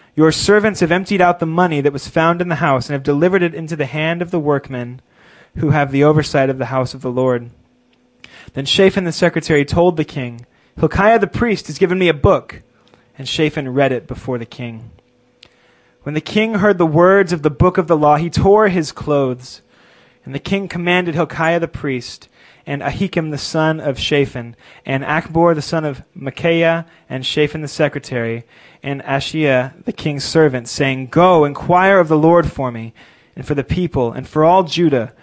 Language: English